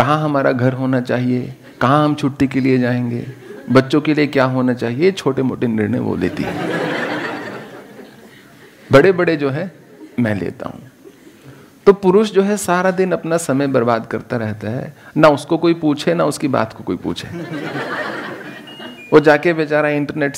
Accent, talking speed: Indian, 155 wpm